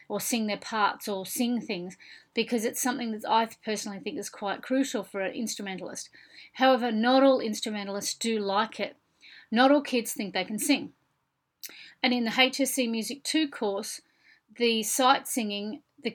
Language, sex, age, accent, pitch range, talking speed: English, female, 40-59, Australian, 205-255 Hz, 165 wpm